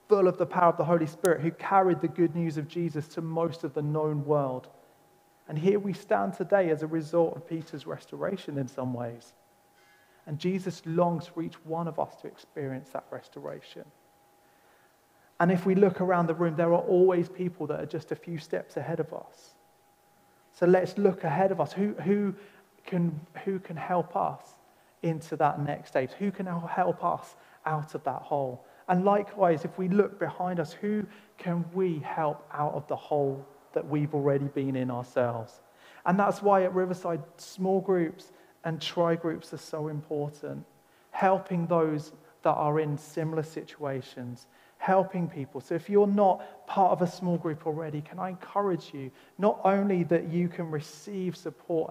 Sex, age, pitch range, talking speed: male, 30-49, 150-185 Hz, 175 wpm